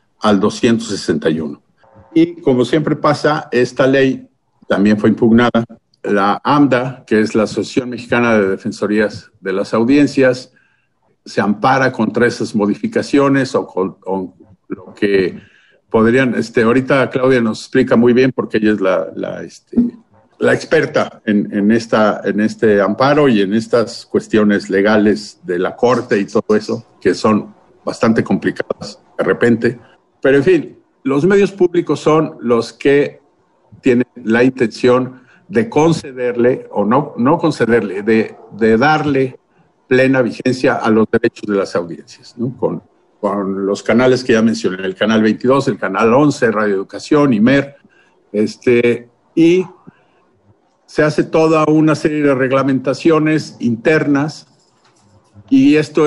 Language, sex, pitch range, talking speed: Spanish, male, 110-145 Hz, 135 wpm